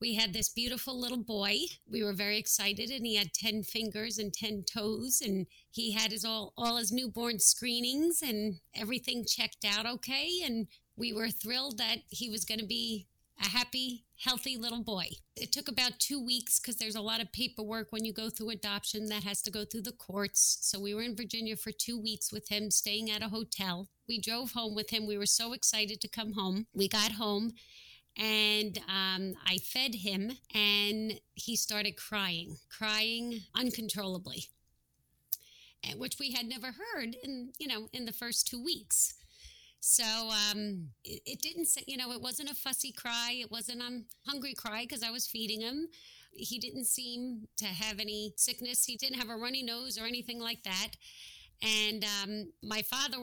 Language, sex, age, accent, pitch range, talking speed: English, female, 30-49, American, 210-240 Hz, 185 wpm